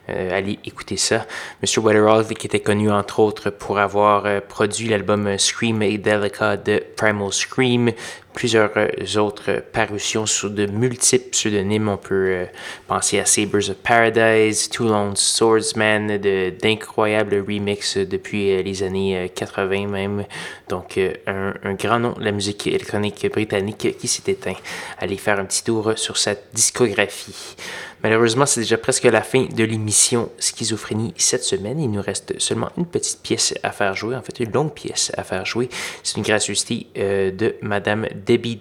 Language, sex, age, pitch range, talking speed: French, male, 20-39, 100-115 Hz, 170 wpm